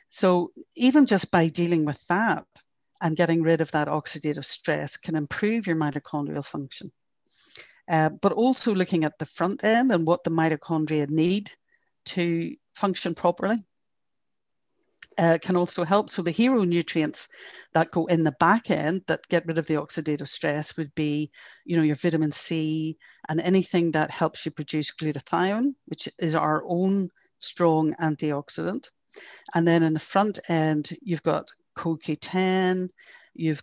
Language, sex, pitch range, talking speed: English, female, 155-180 Hz, 155 wpm